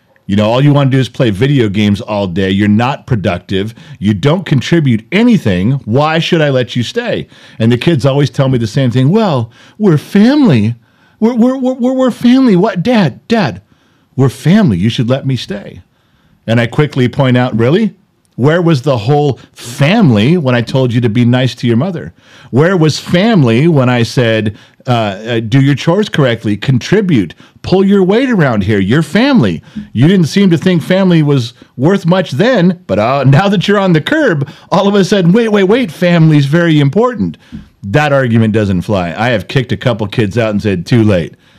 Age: 50-69